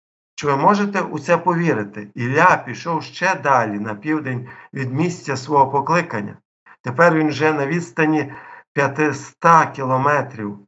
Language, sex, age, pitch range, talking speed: Ukrainian, male, 50-69, 110-145 Hz, 130 wpm